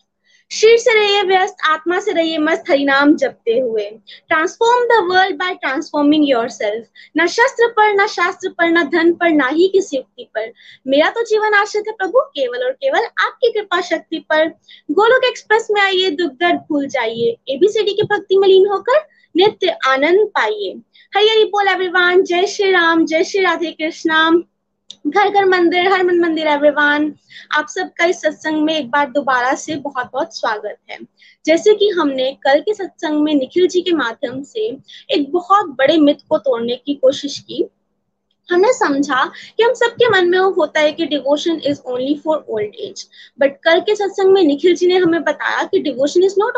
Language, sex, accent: Hindi, female, native